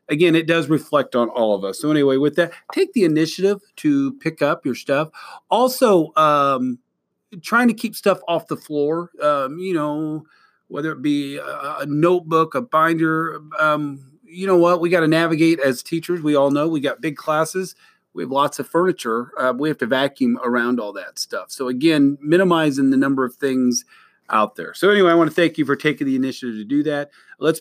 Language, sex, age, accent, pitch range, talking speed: English, male, 40-59, American, 135-180 Hz, 205 wpm